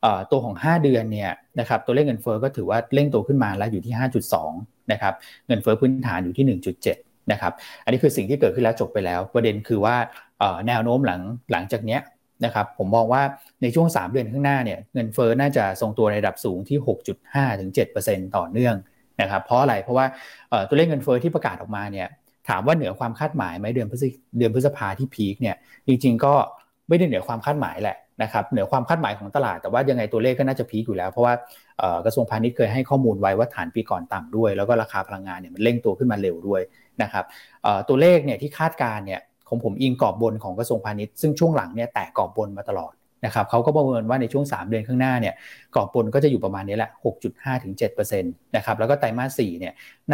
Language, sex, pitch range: Thai, male, 110-135 Hz